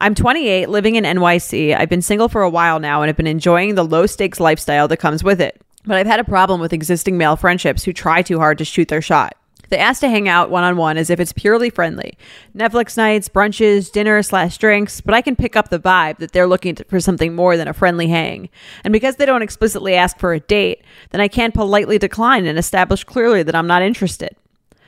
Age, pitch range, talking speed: 30-49, 170-210 Hz, 230 wpm